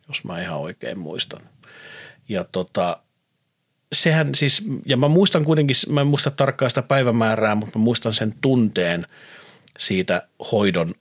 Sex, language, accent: male, Finnish, native